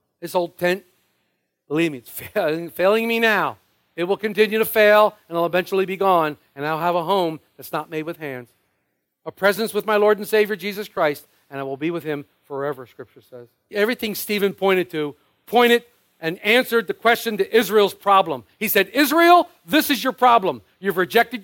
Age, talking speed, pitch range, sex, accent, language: 50-69, 195 wpm, 165-240 Hz, male, American, English